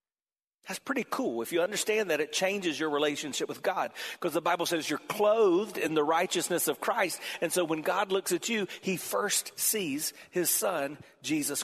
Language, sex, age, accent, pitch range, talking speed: English, male, 40-59, American, 150-205 Hz, 190 wpm